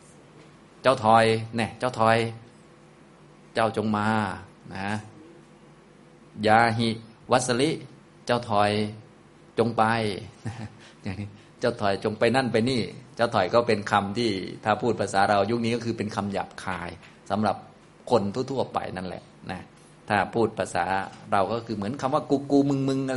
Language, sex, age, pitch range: Thai, male, 20-39, 105-120 Hz